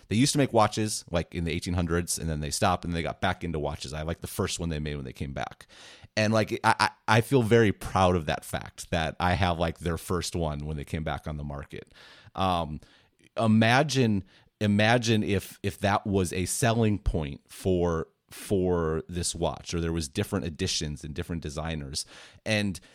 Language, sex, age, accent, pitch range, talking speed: English, male, 30-49, American, 85-110 Hz, 200 wpm